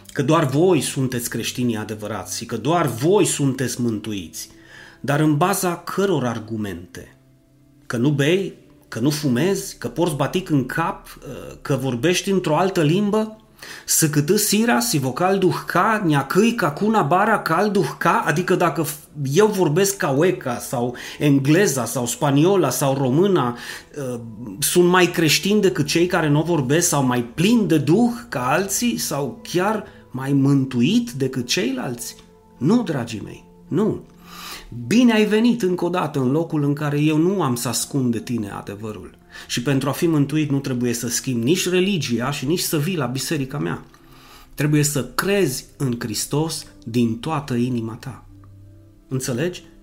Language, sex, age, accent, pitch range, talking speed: Romanian, male, 30-49, native, 120-175 Hz, 150 wpm